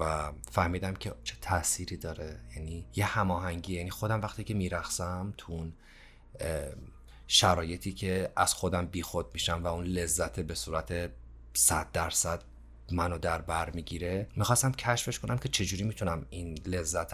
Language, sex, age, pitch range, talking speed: Persian, male, 30-49, 80-95 Hz, 140 wpm